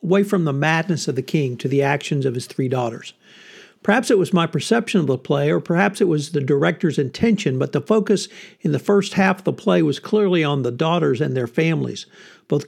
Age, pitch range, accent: 60-79, 140-185 Hz, American